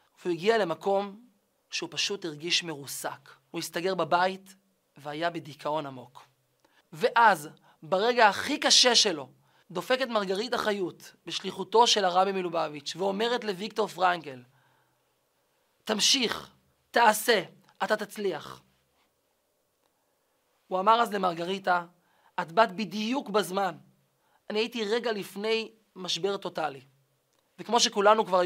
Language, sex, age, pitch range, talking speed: Hebrew, male, 20-39, 170-230 Hz, 105 wpm